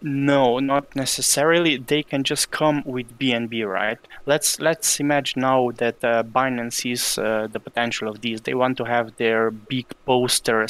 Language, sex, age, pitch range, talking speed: English, male, 20-39, 120-145 Hz, 170 wpm